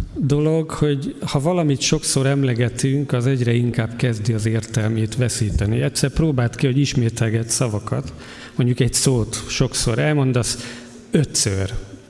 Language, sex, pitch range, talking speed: Hungarian, male, 115-145 Hz, 125 wpm